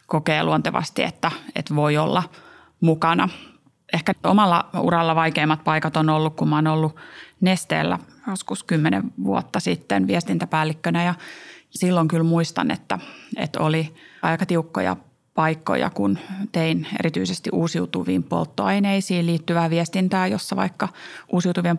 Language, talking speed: Finnish, 120 wpm